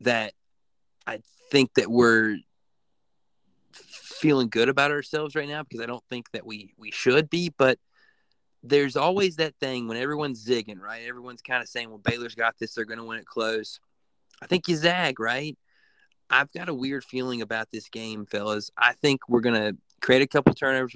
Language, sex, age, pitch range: English, male, 30-49, 110-135 Hz